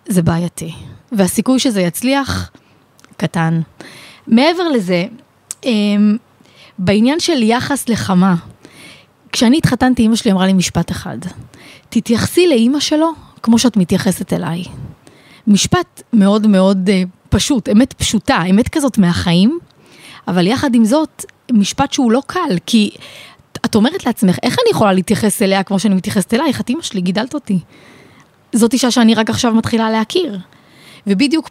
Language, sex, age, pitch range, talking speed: Hebrew, female, 20-39, 185-240 Hz, 135 wpm